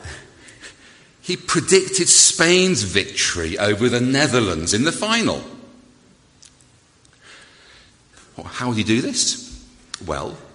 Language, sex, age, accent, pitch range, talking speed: English, male, 50-69, British, 105-170 Hz, 95 wpm